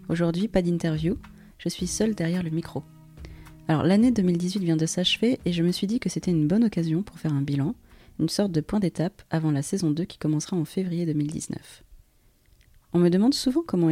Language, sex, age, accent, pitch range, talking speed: French, female, 30-49, French, 155-185 Hz, 205 wpm